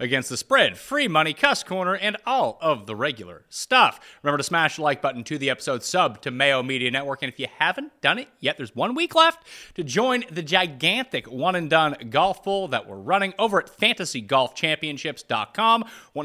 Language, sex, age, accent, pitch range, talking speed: English, male, 30-49, American, 135-210 Hz, 190 wpm